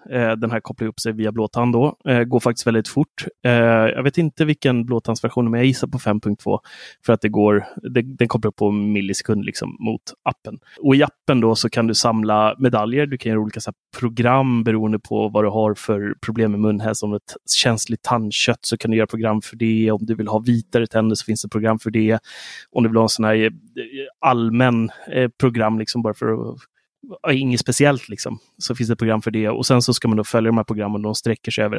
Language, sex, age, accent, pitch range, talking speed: Swedish, male, 30-49, native, 110-125 Hz, 225 wpm